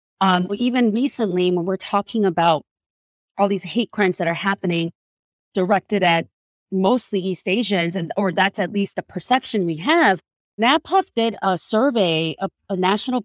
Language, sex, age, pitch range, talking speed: English, female, 30-49, 180-220 Hz, 160 wpm